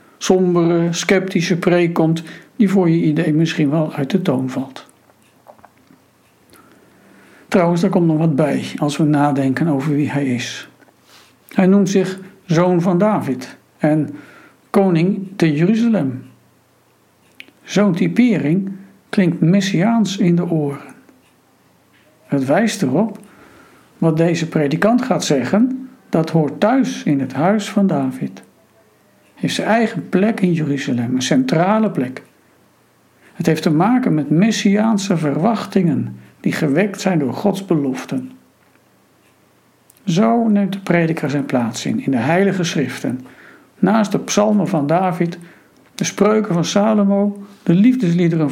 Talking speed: 125 wpm